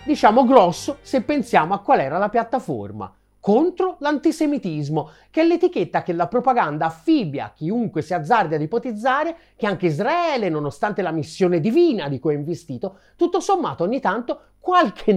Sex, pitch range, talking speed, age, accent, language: male, 175-295 Hz, 155 wpm, 40-59, native, Italian